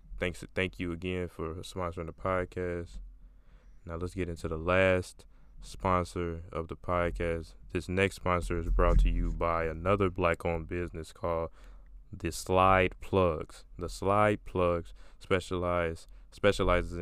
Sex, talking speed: male, 140 wpm